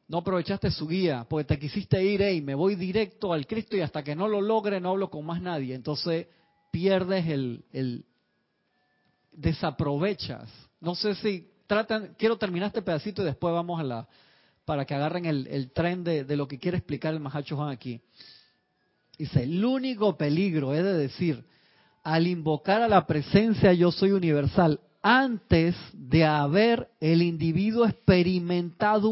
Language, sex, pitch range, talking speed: Spanish, male, 150-195 Hz, 165 wpm